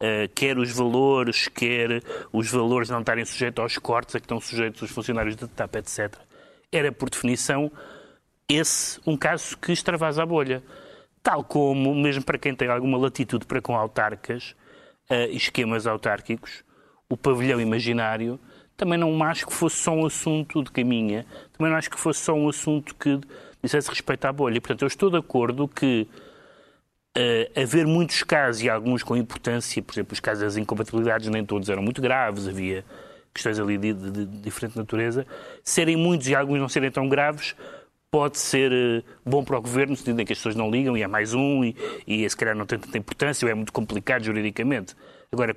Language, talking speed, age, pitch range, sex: Portuguese, 190 wpm, 30-49, 110-140 Hz, male